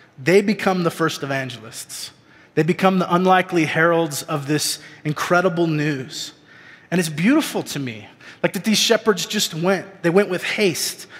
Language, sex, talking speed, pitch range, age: English, male, 155 wpm, 160-200 Hz, 30-49